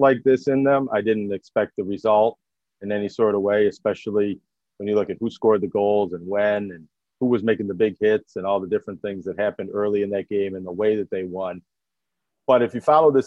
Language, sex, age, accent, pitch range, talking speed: English, male, 40-59, American, 100-120 Hz, 245 wpm